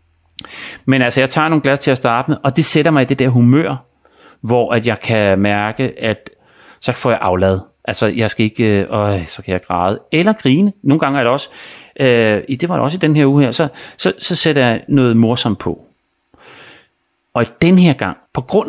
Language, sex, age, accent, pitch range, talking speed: Danish, male, 30-49, native, 110-155 Hz, 225 wpm